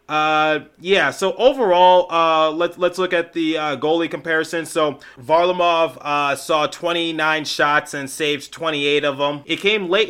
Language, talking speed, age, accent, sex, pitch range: English, 160 wpm, 30-49, American, male, 150-175 Hz